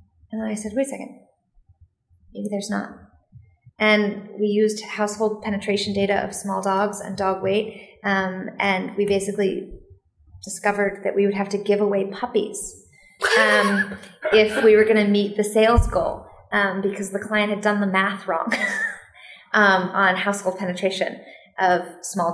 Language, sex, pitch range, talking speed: English, female, 185-220 Hz, 160 wpm